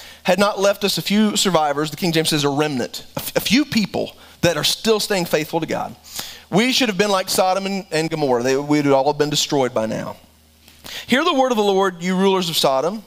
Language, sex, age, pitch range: English, male, 30-49, 160-240 Hz